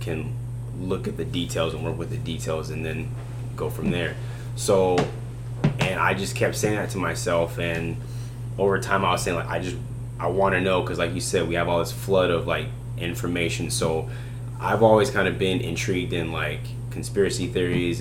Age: 20-39